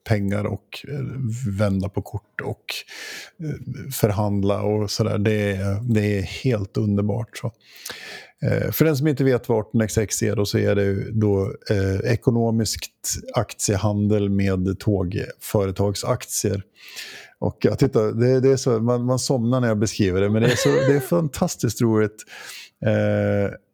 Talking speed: 150 wpm